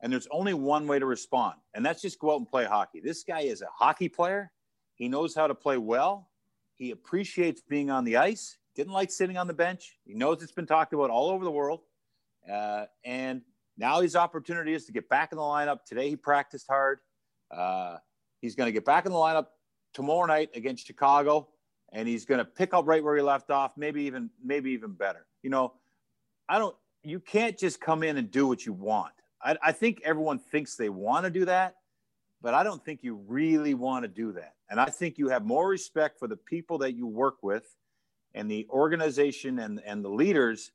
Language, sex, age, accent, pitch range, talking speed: English, male, 40-59, American, 130-175 Hz, 220 wpm